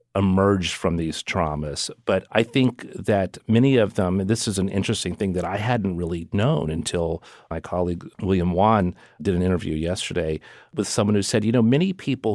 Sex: male